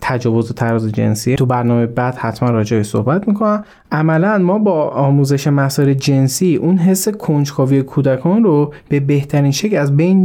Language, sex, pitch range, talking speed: Persian, male, 125-175 Hz, 160 wpm